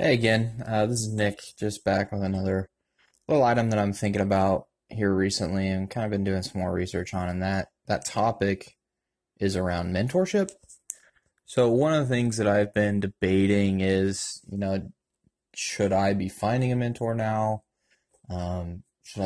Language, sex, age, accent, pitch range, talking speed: English, male, 20-39, American, 95-115 Hz, 170 wpm